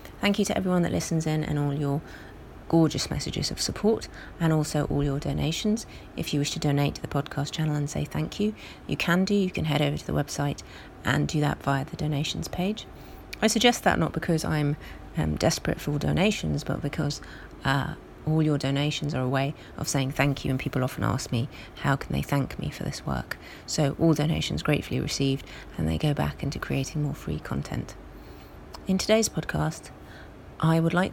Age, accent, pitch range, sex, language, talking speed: 30-49, British, 130-170 Hz, female, English, 200 wpm